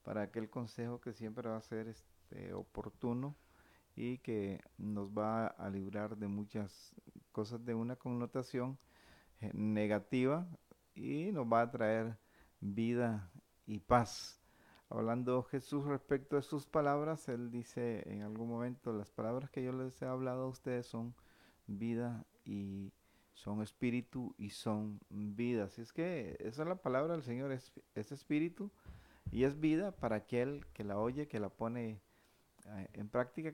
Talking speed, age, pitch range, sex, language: 145 wpm, 40-59, 110-135 Hz, male, Spanish